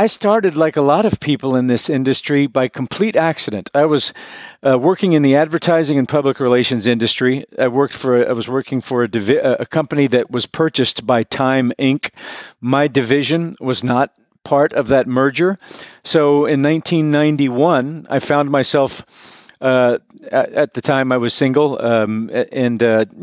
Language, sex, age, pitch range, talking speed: English, male, 50-69, 125-150 Hz, 170 wpm